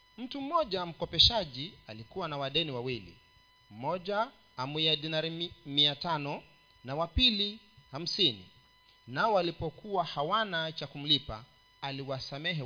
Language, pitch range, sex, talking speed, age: Swahili, 130-180 Hz, male, 105 wpm, 40-59